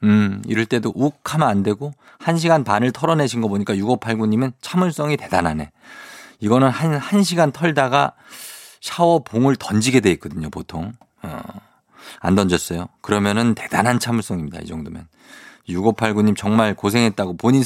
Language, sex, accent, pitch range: Korean, male, native, 100-140 Hz